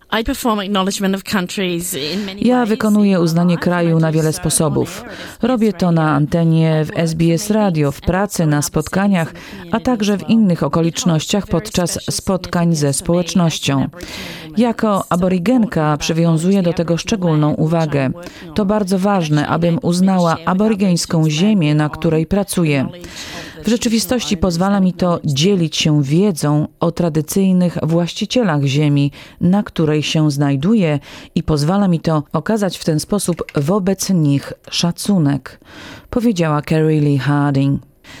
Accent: native